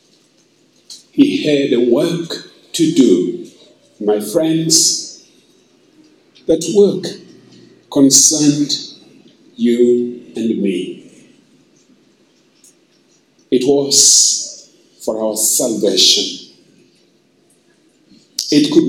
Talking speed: 60 wpm